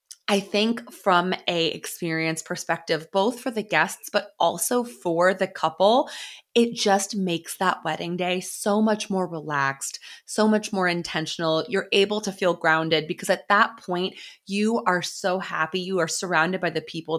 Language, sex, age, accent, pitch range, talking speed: English, female, 20-39, American, 160-210 Hz, 170 wpm